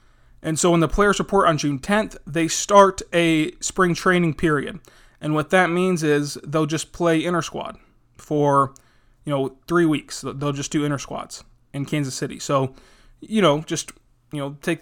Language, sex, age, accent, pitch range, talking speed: English, male, 20-39, American, 145-170 Hz, 175 wpm